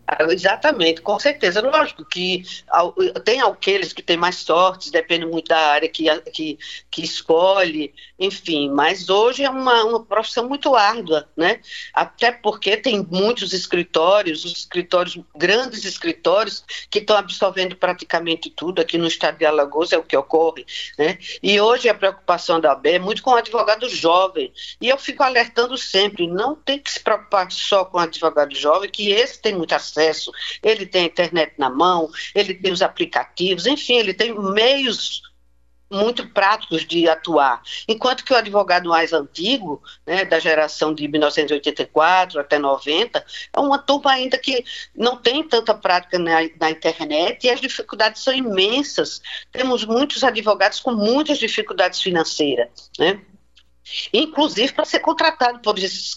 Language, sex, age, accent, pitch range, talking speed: Portuguese, female, 50-69, Brazilian, 165-250 Hz, 155 wpm